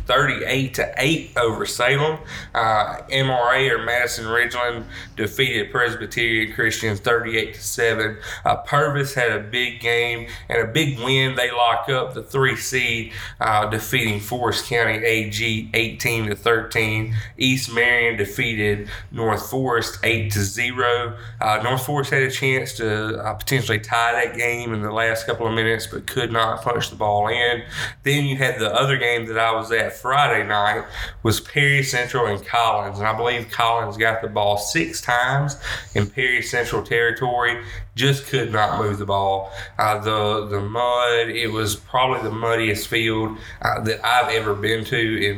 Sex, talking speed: male, 165 wpm